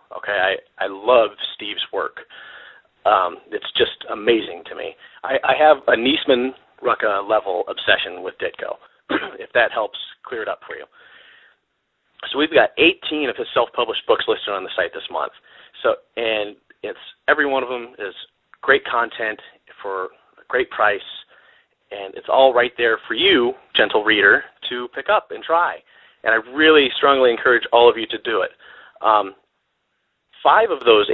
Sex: male